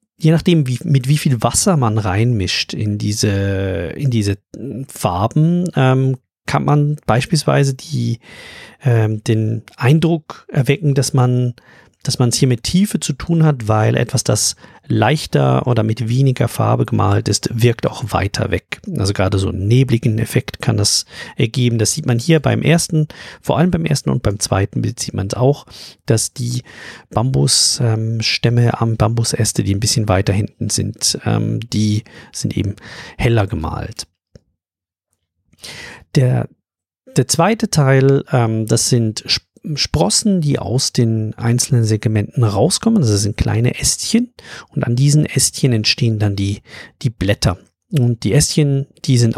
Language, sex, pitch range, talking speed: German, male, 105-140 Hz, 150 wpm